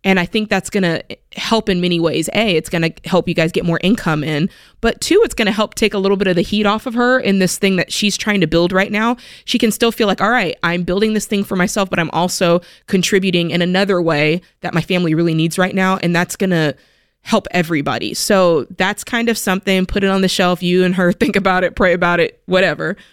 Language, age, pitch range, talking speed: English, 20-39, 170-200 Hz, 260 wpm